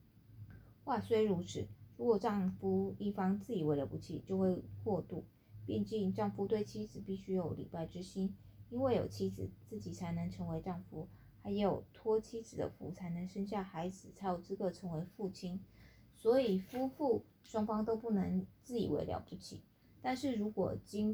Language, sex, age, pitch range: Chinese, female, 20-39, 175-210 Hz